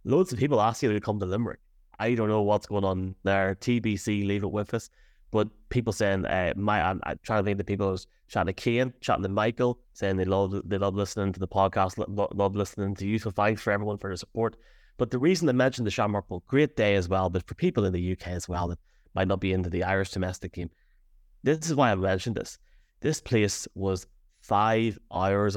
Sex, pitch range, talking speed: male, 95-110 Hz, 230 wpm